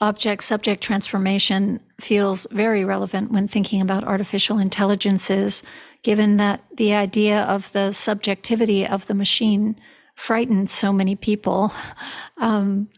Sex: female